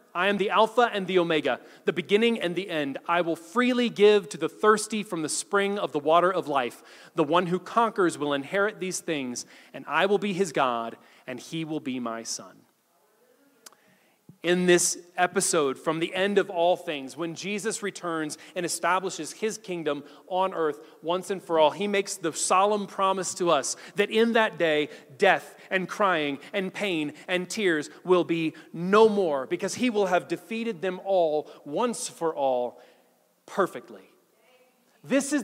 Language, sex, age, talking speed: English, male, 30-49, 175 wpm